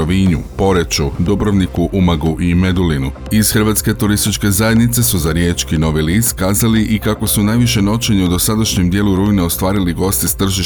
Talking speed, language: 145 wpm, Croatian